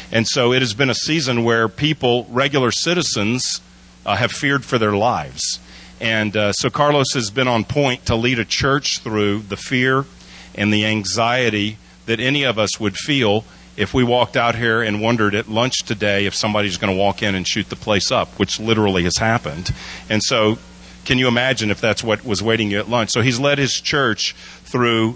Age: 40-59